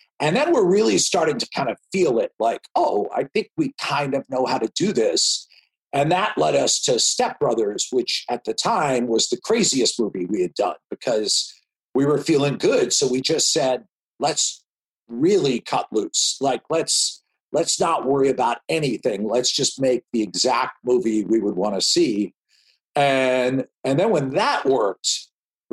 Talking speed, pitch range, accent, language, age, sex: 180 wpm, 125-200 Hz, American, English, 50-69, male